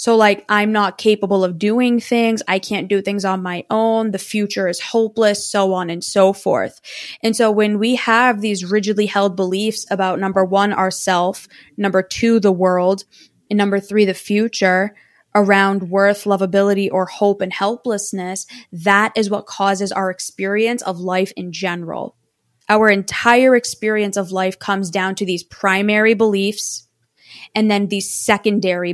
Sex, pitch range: female, 190-215 Hz